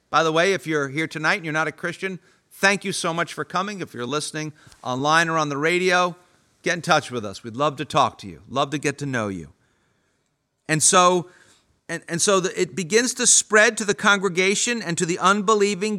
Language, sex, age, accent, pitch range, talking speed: English, male, 50-69, American, 170-230 Hz, 215 wpm